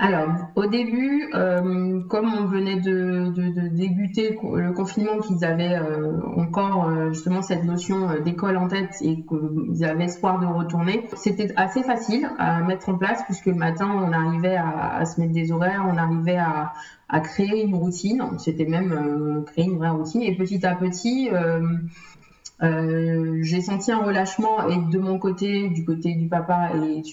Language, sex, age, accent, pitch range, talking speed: French, female, 20-39, French, 165-200 Hz, 175 wpm